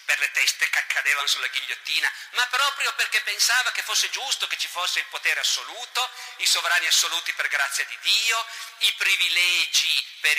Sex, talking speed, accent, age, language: male, 175 wpm, native, 50-69, Italian